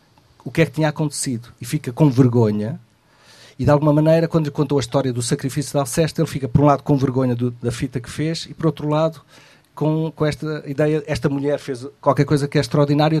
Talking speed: 230 wpm